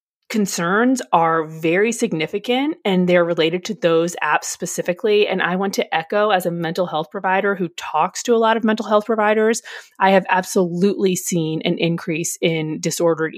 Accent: American